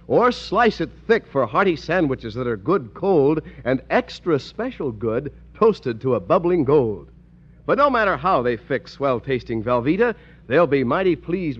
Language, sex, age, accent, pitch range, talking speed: English, male, 60-79, American, 125-190 Hz, 165 wpm